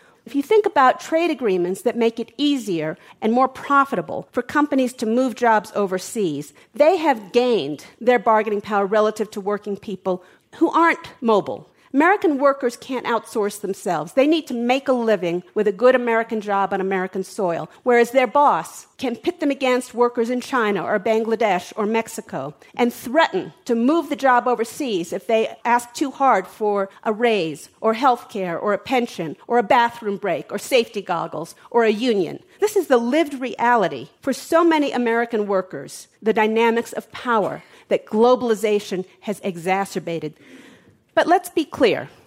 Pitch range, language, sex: 200-255 Hz, English, female